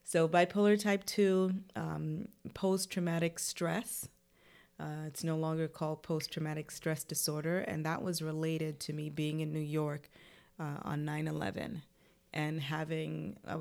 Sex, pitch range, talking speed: female, 155-175 Hz, 130 wpm